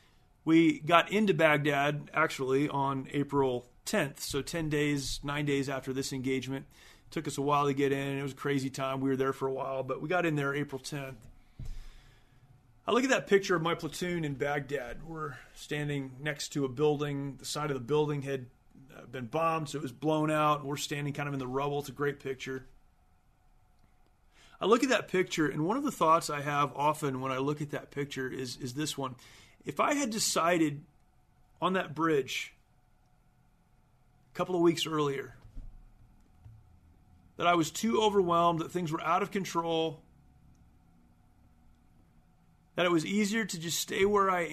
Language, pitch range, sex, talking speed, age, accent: English, 130-165 Hz, male, 185 wpm, 30-49, American